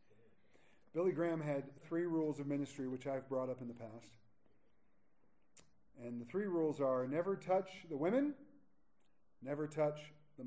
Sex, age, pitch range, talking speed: male, 40-59, 115-175 Hz, 150 wpm